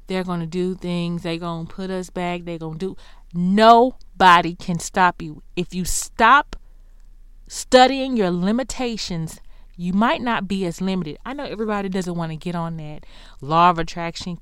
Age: 30-49